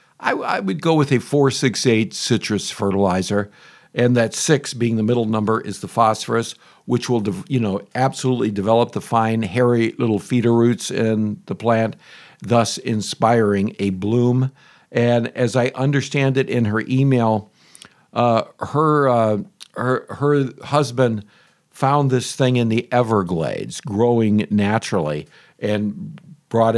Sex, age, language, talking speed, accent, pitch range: male, 50-69, English, 145 wpm, American, 105-130 Hz